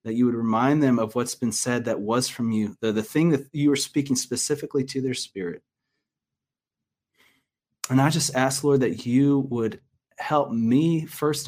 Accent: American